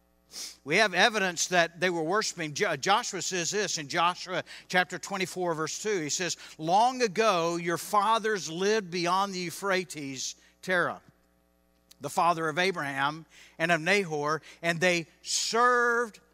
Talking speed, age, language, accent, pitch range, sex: 135 wpm, 50-69, English, American, 170-215 Hz, male